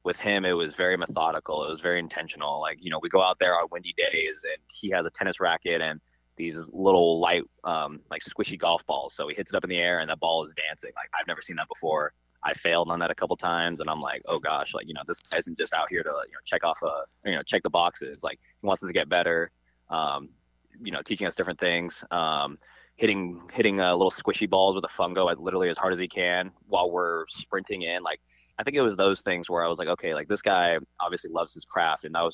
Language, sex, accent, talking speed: English, male, American, 265 wpm